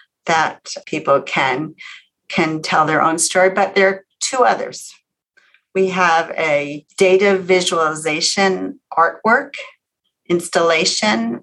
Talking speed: 105 wpm